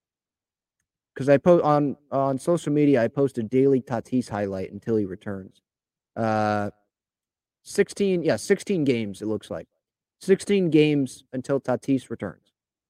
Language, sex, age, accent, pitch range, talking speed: English, male, 30-49, American, 110-155 Hz, 135 wpm